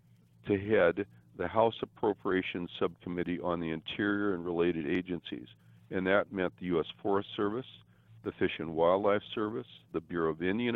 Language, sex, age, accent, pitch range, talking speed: English, male, 60-79, American, 85-110 Hz, 155 wpm